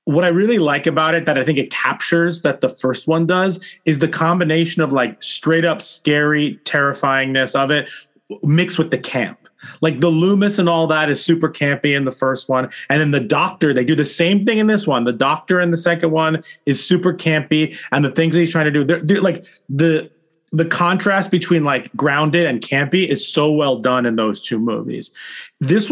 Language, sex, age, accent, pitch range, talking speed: English, male, 30-49, American, 145-175 Hz, 215 wpm